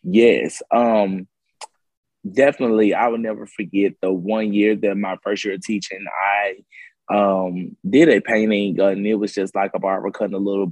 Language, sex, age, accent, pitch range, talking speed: English, male, 20-39, American, 100-125 Hz, 175 wpm